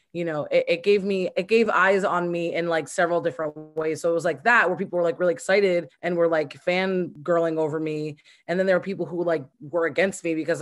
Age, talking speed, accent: 20-39, 250 wpm, American